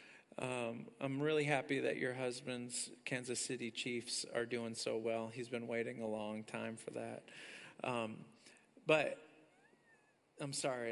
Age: 40-59